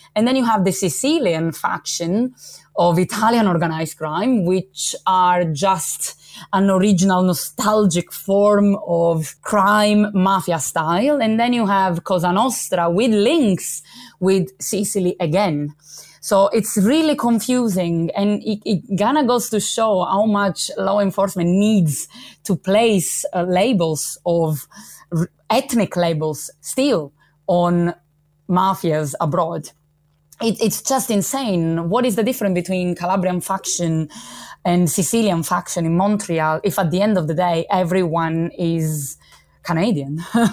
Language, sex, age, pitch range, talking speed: English, female, 30-49, 160-205 Hz, 125 wpm